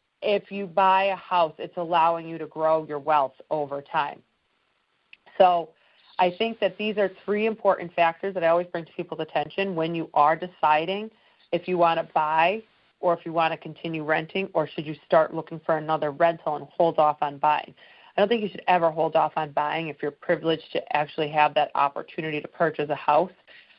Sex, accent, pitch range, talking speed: female, American, 160-190 Hz, 205 wpm